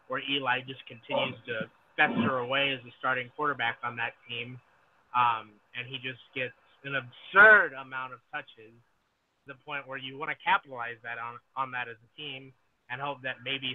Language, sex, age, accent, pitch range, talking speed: English, male, 30-49, American, 125-145 Hz, 190 wpm